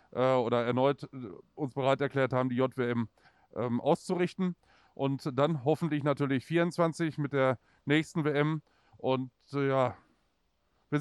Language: German